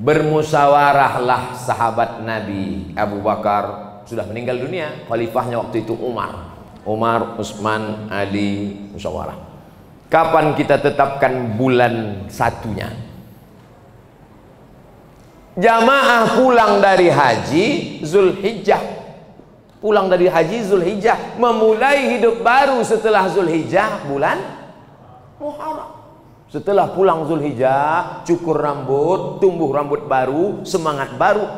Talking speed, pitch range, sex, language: 90 wpm, 115-190 Hz, male, Indonesian